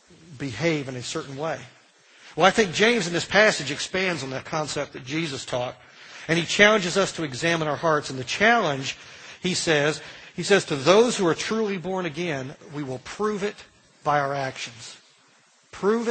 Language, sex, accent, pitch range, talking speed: English, male, American, 145-190 Hz, 185 wpm